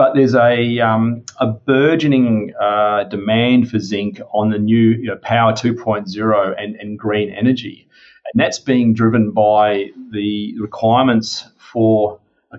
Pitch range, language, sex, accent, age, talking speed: 105-115 Hz, English, male, Australian, 40-59, 145 wpm